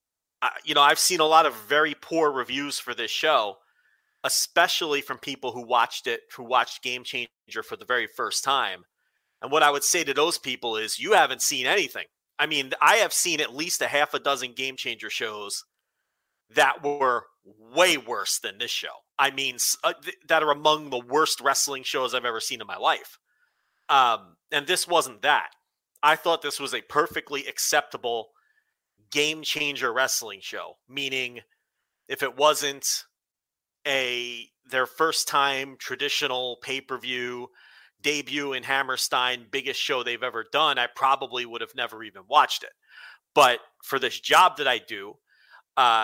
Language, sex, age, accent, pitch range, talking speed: English, male, 30-49, American, 125-150 Hz, 170 wpm